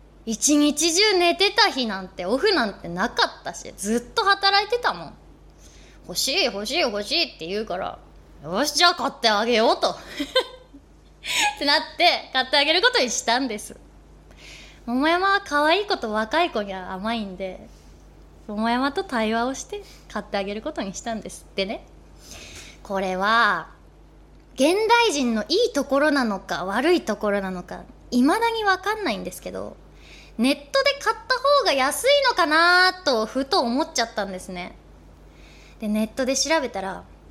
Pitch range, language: 210-345 Hz, Japanese